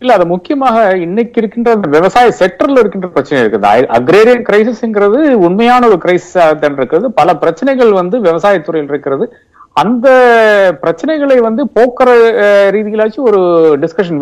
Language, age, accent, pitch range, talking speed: Tamil, 50-69, native, 180-250 Hz, 70 wpm